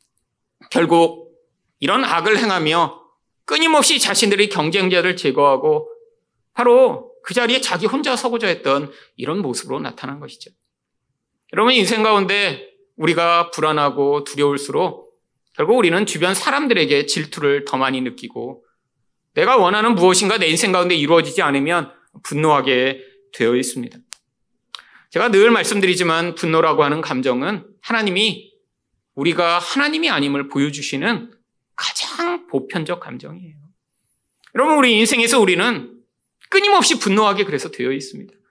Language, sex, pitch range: Korean, male, 155-245 Hz